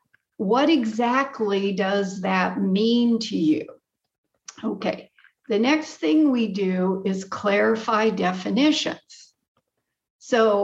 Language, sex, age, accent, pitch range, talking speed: English, female, 60-79, American, 190-250 Hz, 95 wpm